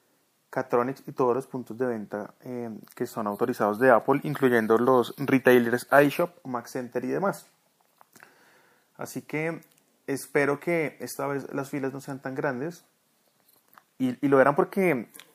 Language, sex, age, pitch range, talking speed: Spanish, male, 30-49, 115-140 Hz, 145 wpm